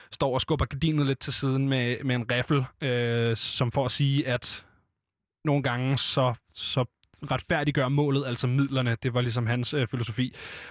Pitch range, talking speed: 125-155 Hz, 175 wpm